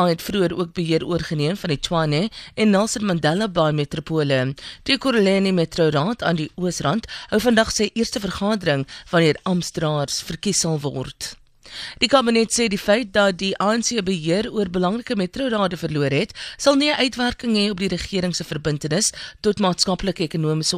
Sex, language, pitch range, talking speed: female, English, 155-210 Hz, 155 wpm